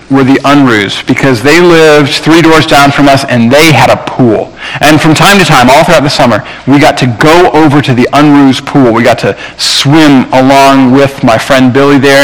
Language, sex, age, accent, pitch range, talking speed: English, male, 40-59, American, 125-155 Hz, 215 wpm